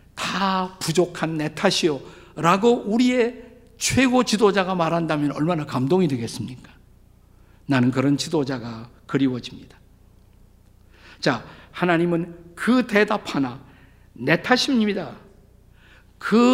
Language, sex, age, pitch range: Korean, male, 50-69, 125-190 Hz